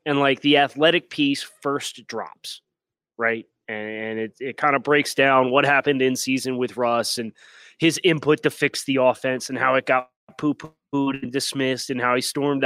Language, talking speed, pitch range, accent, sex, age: English, 185 wpm, 125-160 Hz, American, male, 30-49